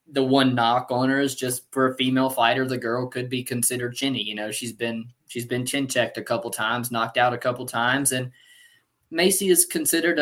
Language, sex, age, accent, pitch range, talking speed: English, male, 20-39, American, 115-130 Hz, 215 wpm